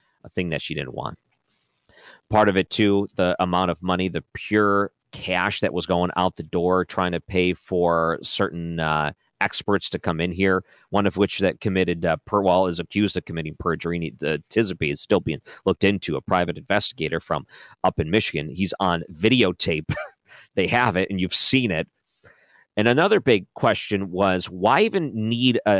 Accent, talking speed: American, 185 wpm